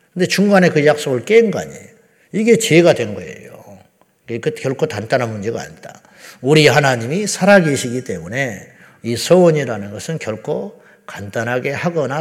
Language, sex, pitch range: Korean, male, 120-170 Hz